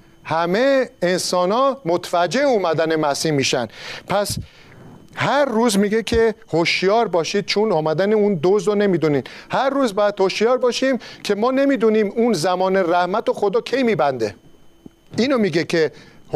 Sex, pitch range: male, 170-230 Hz